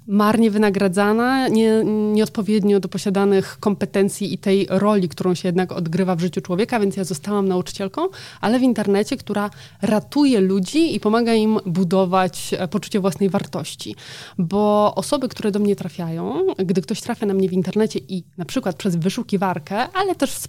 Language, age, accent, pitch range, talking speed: Polish, 20-39, native, 185-215 Hz, 160 wpm